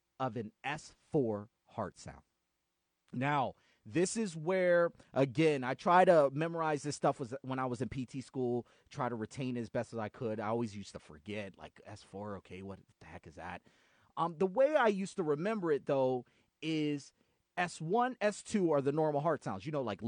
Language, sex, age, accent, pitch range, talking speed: English, male, 30-49, American, 125-195 Hz, 195 wpm